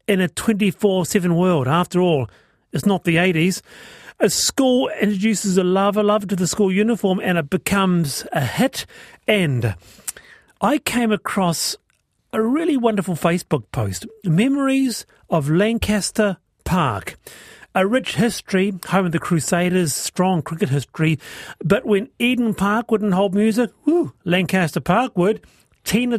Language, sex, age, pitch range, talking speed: English, male, 40-59, 145-205 Hz, 140 wpm